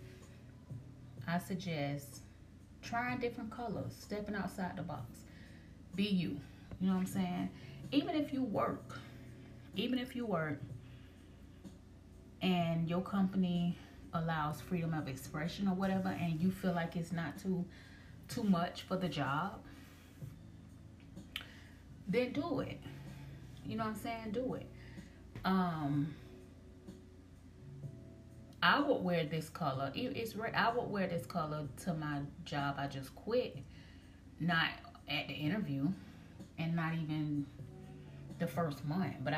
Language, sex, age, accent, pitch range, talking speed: English, female, 30-49, American, 115-180 Hz, 130 wpm